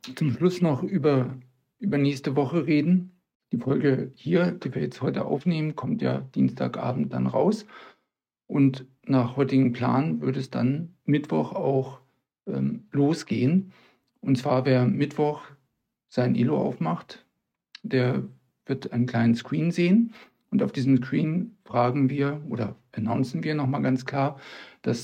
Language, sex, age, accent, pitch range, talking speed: German, male, 50-69, German, 130-165 Hz, 140 wpm